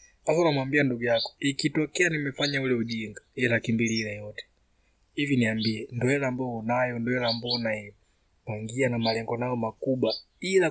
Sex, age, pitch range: male, 20-39, 110-130 Hz